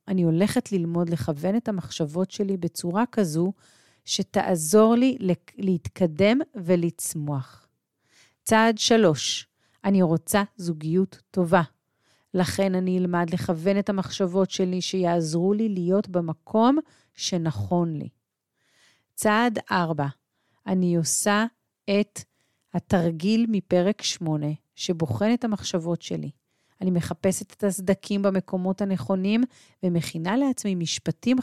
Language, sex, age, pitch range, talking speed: Hebrew, female, 40-59, 165-205 Hz, 100 wpm